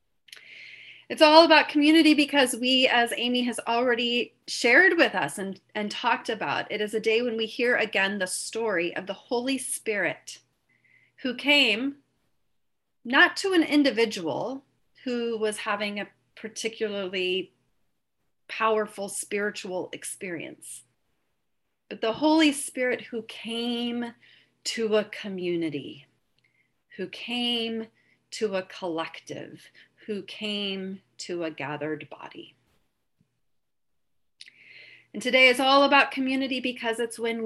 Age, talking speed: 40-59, 120 wpm